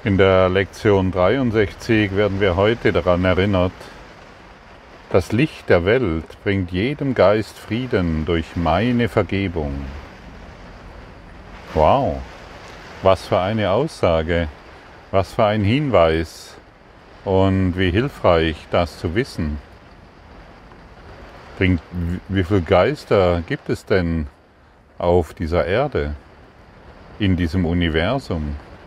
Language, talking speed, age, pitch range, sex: German, 100 wpm, 50-69, 85-100 Hz, male